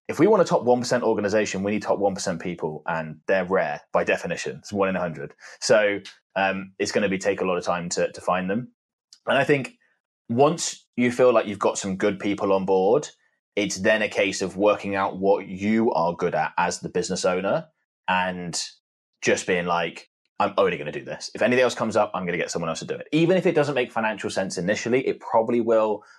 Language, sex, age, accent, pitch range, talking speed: English, male, 20-39, British, 95-125 Hz, 230 wpm